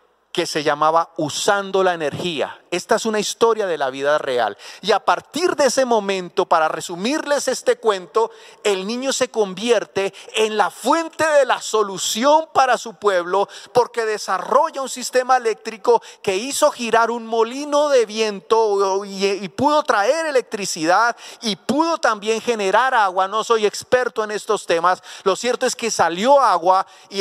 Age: 30-49